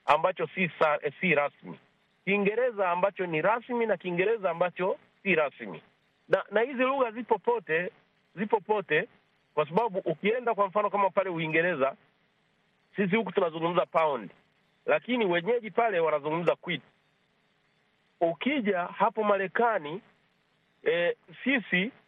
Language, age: Swahili, 40-59